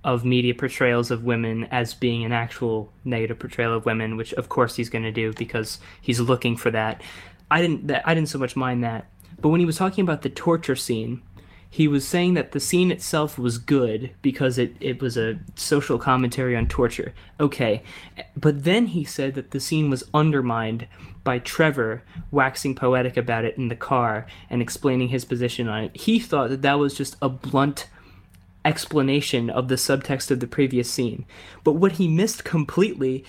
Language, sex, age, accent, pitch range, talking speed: English, male, 20-39, American, 120-155 Hz, 195 wpm